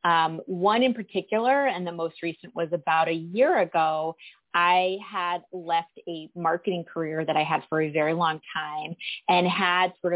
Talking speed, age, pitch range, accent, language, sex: 175 wpm, 30-49, 165-195 Hz, American, English, female